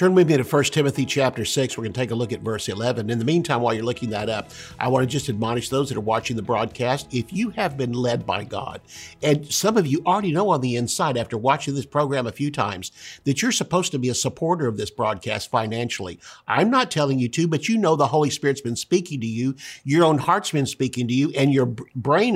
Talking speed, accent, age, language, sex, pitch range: 255 wpm, American, 50-69, English, male, 120-160 Hz